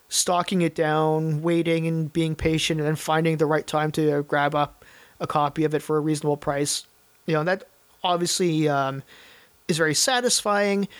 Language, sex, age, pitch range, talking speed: English, male, 30-49, 155-180 Hz, 185 wpm